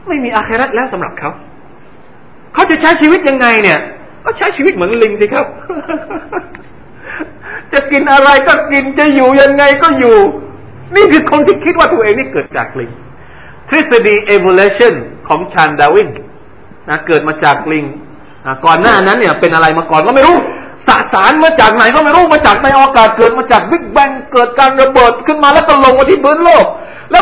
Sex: male